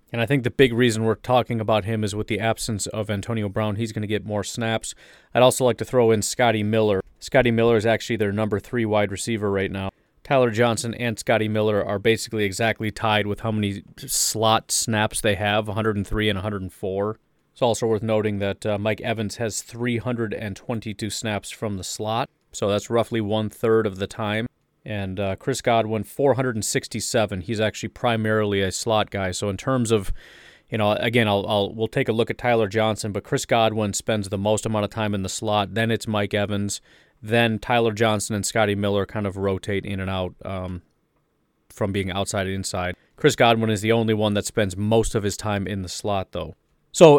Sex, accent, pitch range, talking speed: male, American, 100-115 Hz, 205 wpm